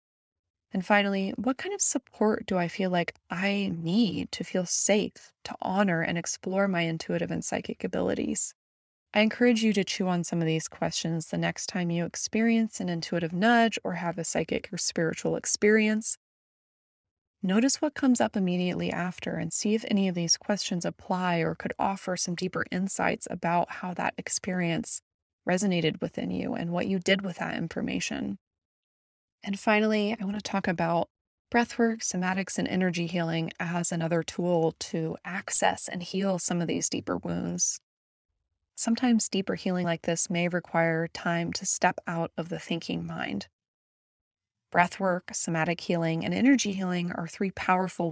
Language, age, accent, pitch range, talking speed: English, 20-39, American, 165-205 Hz, 165 wpm